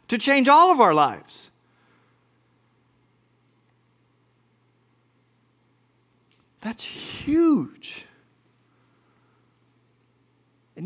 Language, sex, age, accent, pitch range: English, male, 40-59, American, 145-205 Hz